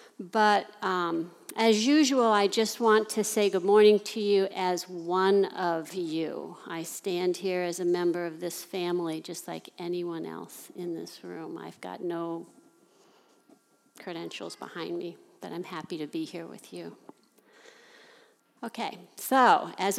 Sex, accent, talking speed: female, American, 150 wpm